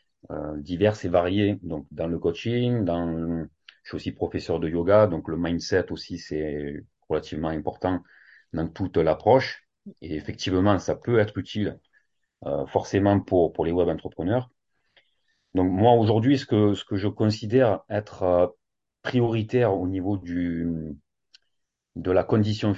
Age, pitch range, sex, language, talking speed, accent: 40-59, 85-110 Hz, male, French, 140 wpm, French